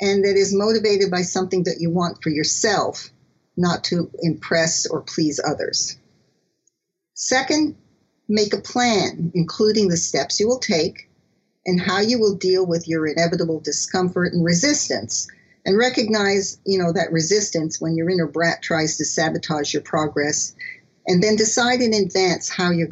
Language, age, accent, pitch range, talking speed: English, 50-69, American, 165-220 Hz, 150 wpm